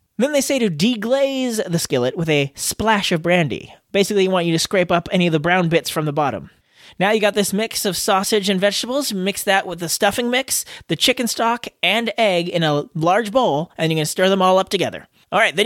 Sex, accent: male, American